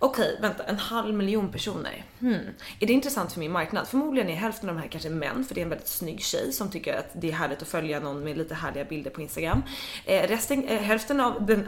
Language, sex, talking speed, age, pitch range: Swedish, female, 250 wpm, 20-39, 165-230 Hz